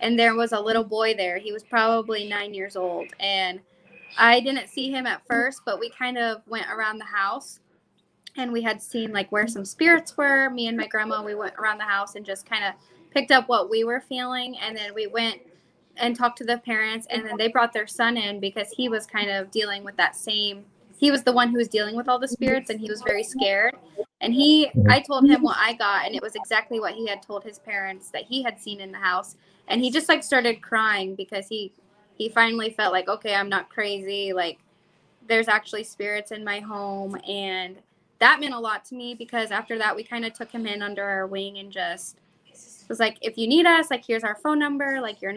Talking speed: 235 wpm